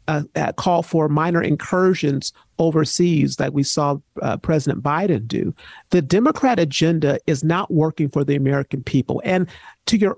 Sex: male